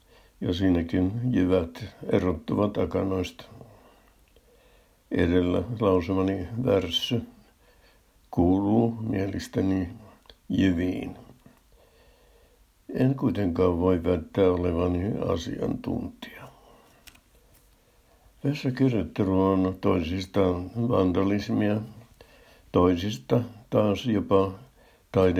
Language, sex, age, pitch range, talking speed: Finnish, male, 60-79, 90-105 Hz, 60 wpm